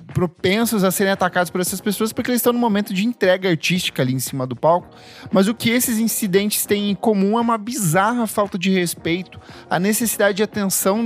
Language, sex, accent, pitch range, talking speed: Portuguese, male, Brazilian, 175-215 Hz, 205 wpm